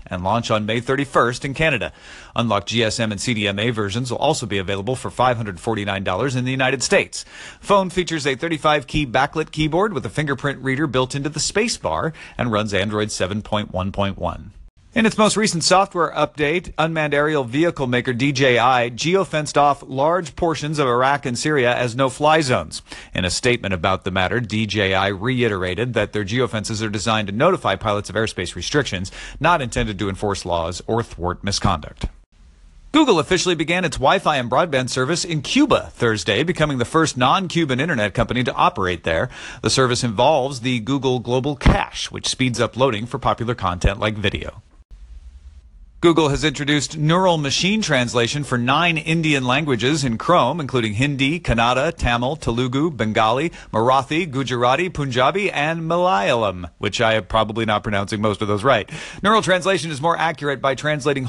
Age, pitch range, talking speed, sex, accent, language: 40-59, 105-150 Hz, 160 wpm, male, American, English